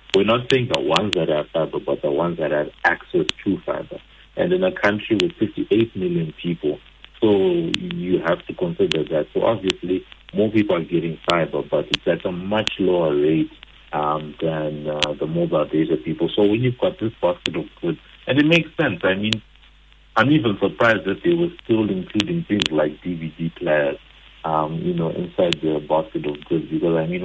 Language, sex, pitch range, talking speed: English, male, 80-110 Hz, 195 wpm